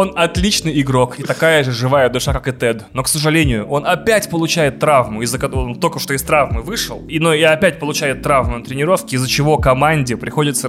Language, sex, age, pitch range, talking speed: Russian, male, 20-39, 130-165 Hz, 210 wpm